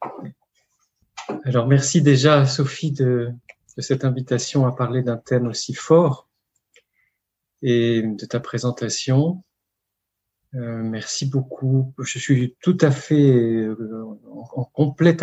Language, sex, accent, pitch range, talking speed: French, male, French, 115-145 Hz, 115 wpm